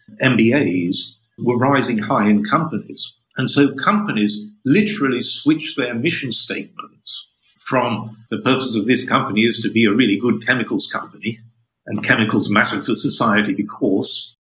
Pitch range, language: 110-155 Hz, English